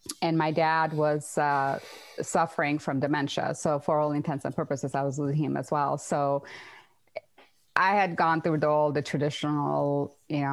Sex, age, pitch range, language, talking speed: female, 30-49, 145-170 Hz, English, 170 wpm